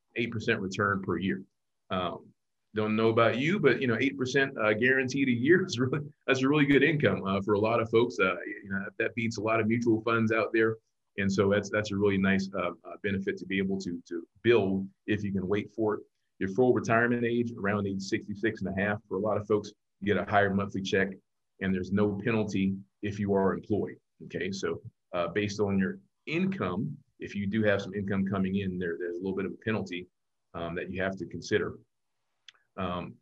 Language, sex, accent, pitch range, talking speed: English, male, American, 95-115 Hz, 220 wpm